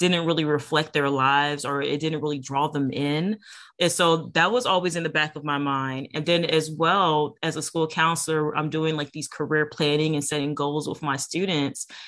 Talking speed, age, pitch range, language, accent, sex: 215 wpm, 30-49, 145-165 Hz, English, American, female